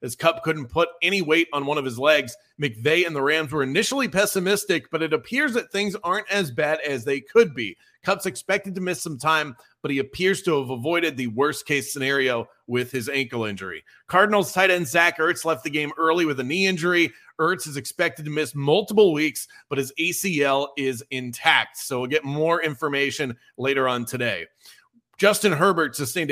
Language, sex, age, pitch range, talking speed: English, male, 30-49, 135-180 Hz, 195 wpm